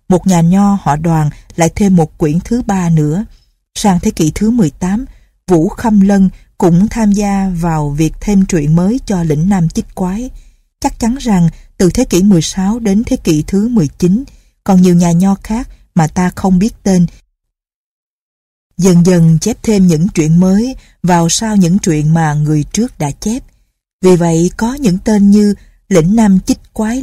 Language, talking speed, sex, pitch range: Vietnamese, 180 wpm, female, 170-220 Hz